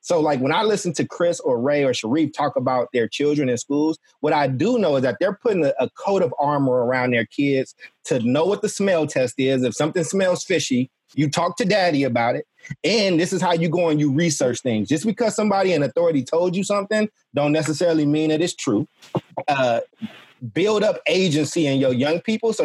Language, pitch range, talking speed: English, 140-190 Hz, 220 wpm